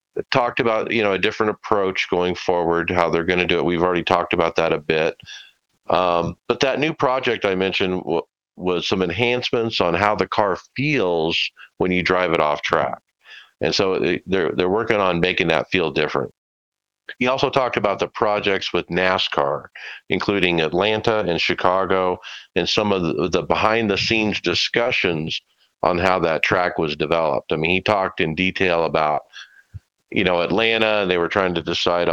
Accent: American